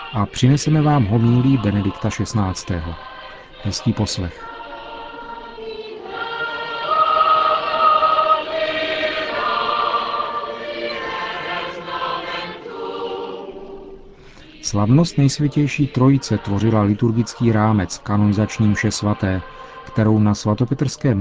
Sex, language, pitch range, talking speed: male, Czech, 105-135 Hz, 55 wpm